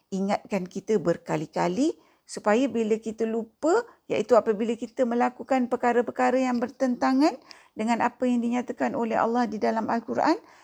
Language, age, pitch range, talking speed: Malay, 50-69, 190-255 Hz, 130 wpm